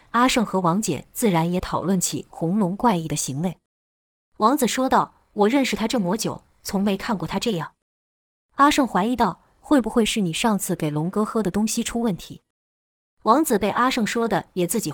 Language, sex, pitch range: Chinese, female, 160-230 Hz